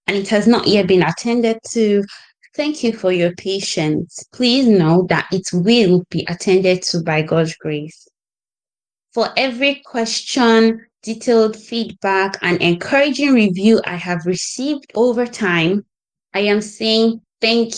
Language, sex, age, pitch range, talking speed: English, female, 20-39, 180-220 Hz, 140 wpm